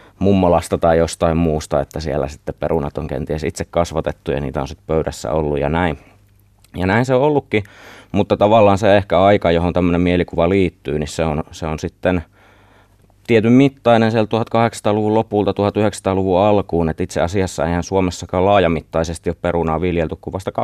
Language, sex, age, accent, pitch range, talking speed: Finnish, male, 30-49, native, 80-100 Hz, 170 wpm